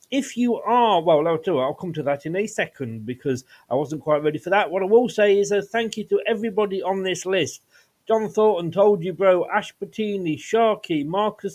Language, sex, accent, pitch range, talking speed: English, male, British, 155-205 Hz, 210 wpm